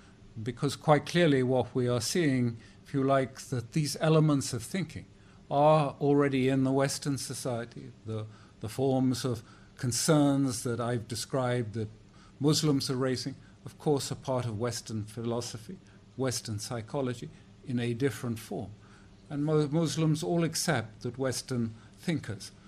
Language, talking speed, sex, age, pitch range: English, 145 wpm, male, 50-69, 100-135 Hz